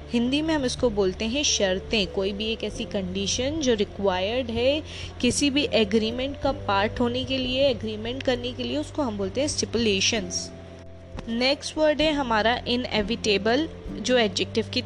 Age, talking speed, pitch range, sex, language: 20-39, 160 wpm, 210-255 Hz, female, Hindi